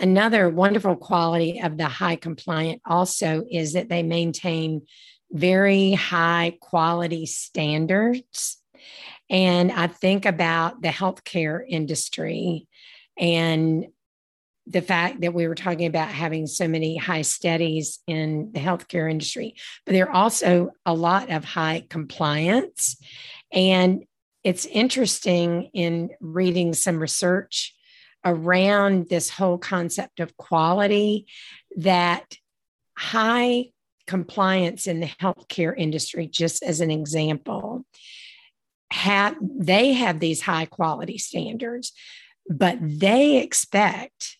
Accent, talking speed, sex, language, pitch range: American, 110 wpm, female, English, 165-200 Hz